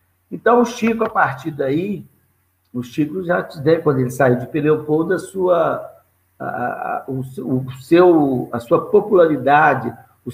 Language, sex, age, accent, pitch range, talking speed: Portuguese, male, 60-79, Brazilian, 125-170 Hz, 150 wpm